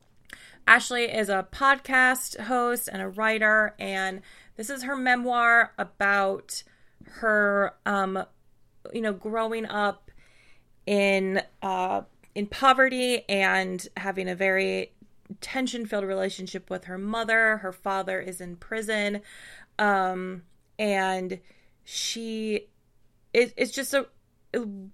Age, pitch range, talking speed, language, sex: 20-39, 190-220 Hz, 110 wpm, English, female